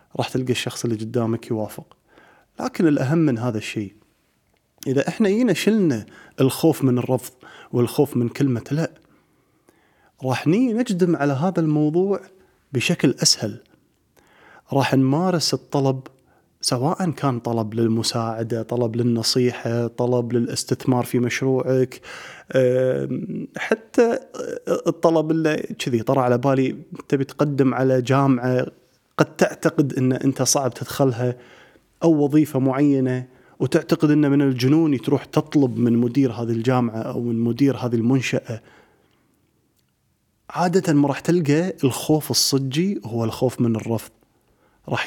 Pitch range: 120-150 Hz